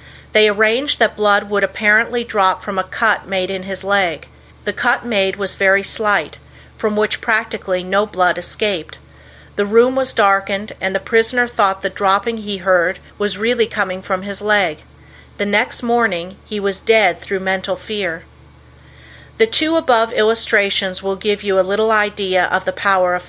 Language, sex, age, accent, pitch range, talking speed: English, female, 40-59, American, 185-220 Hz, 175 wpm